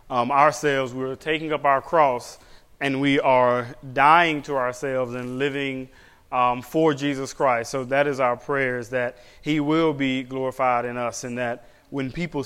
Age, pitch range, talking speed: 30-49, 130-145 Hz, 175 wpm